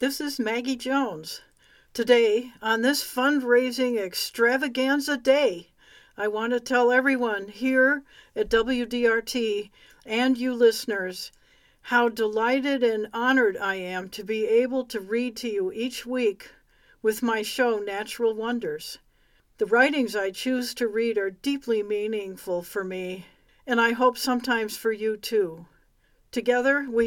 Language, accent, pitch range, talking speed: English, American, 210-250 Hz, 135 wpm